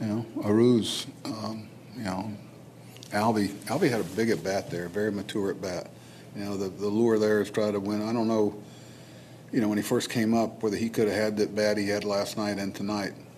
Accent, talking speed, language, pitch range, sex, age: American, 225 wpm, English, 100-110 Hz, male, 50-69